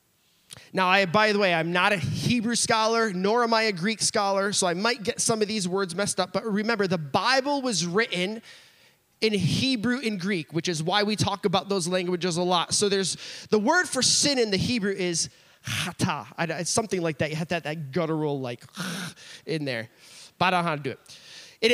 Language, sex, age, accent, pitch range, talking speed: English, male, 20-39, American, 175-245 Hz, 220 wpm